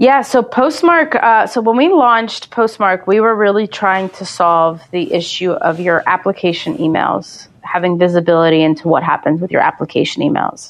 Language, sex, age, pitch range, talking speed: English, female, 30-49, 165-195 Hz, 170 wpm